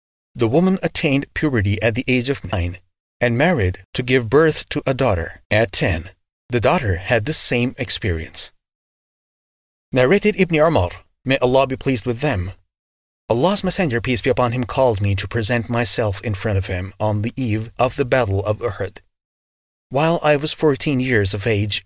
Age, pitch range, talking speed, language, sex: 30-49, 95-125 Hz, 175 wpm, English, male